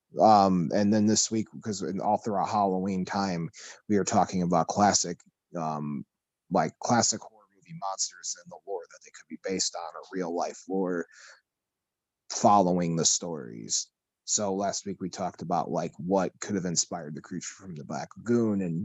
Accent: American